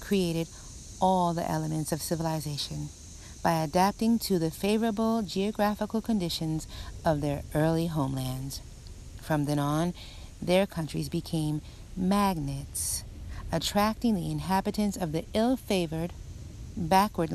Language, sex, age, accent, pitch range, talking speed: English, female, 50-69, American, 155-195 Hz, 105 wpm